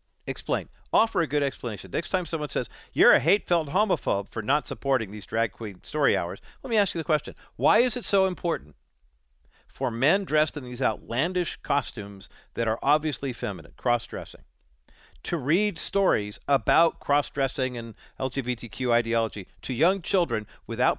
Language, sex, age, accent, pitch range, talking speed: English, male, 50-69, American, 120-195 Hz, 160 wpm